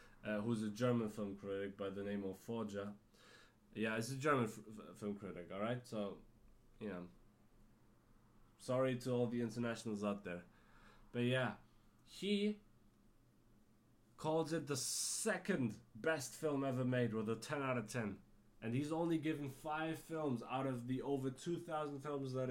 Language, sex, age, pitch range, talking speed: English, male, 20-39, 110-145 Hz, 155 wpm